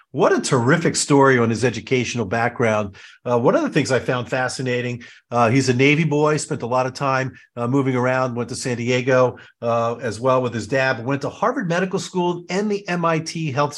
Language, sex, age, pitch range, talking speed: English, male, 50-69, 125-155 Hz, 210 wpm